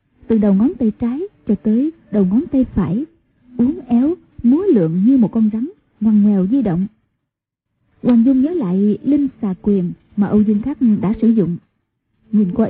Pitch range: 200-260 Hz